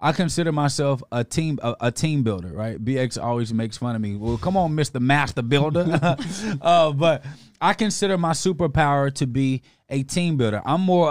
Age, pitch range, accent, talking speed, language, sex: 20-39, 130-170 Hz, American, 190 wpm, English, male